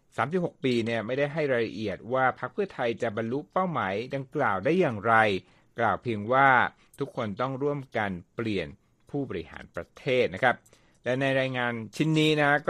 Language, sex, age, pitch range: Thai, male, 60-79, 110-150 Hz